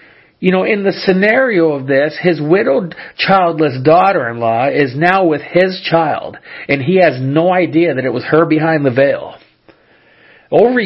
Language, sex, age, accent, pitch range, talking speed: English, male, 40-59, American, 140-175 Hz, 160 wpm